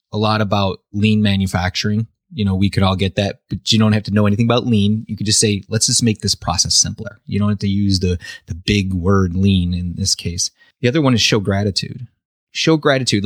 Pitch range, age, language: 100-130 Hz, 30-49, English